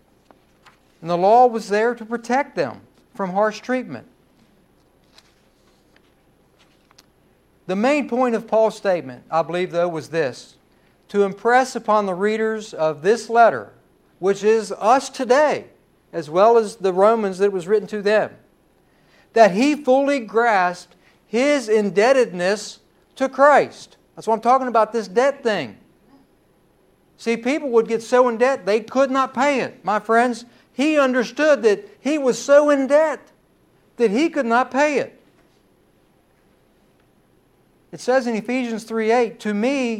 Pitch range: 210-260 Hz